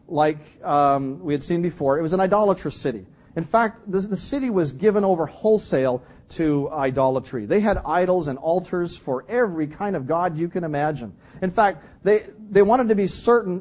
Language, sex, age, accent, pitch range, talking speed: English, male, 40-59, American, 145-200 Hz, 190 wpm